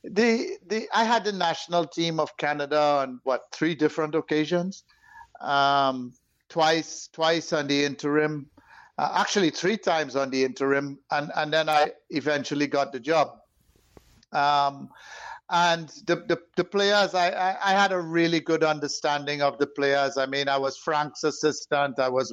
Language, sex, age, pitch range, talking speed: English, male, 60-79, 140-165 Hz, 160 wpm